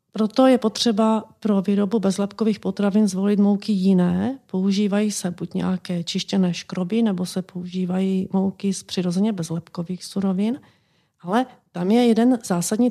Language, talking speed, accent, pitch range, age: Czech, 135 wpm, native, 185-225 Hz, 40-59